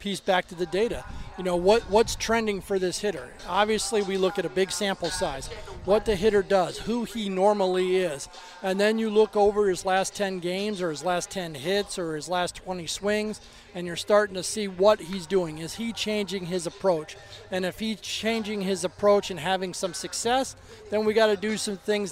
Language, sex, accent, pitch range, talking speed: English, male, American, 180-210 Hz, 210 wpm